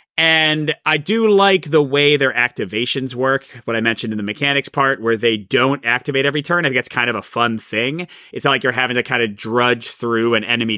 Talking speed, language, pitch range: 235 wpm, English, 135-180 Hz